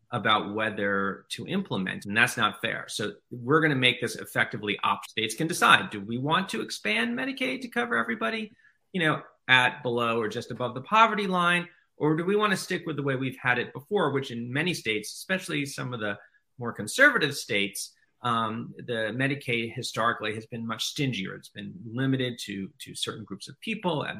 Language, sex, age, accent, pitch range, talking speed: English, male, 30-49, American, 105-150 Hz, 200 wpm